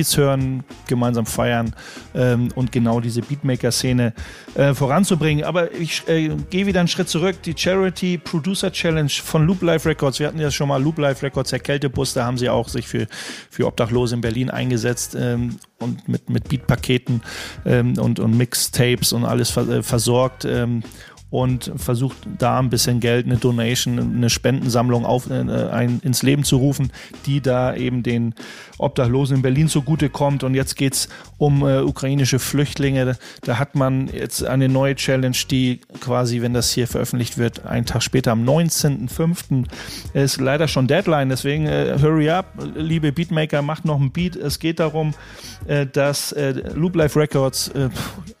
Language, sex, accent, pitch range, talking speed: German, male, German, 120-150 Hz, 170 wpm